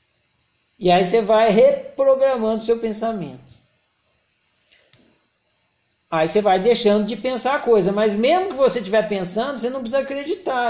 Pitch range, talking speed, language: 215-270 Hz, 140 wpm, Portuguese